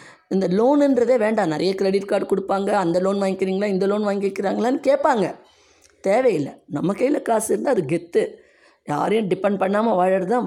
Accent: native